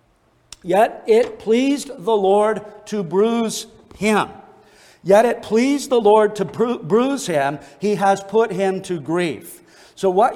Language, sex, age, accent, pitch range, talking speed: English, male, 50-69, American, 190-240 Hz, 140 wpm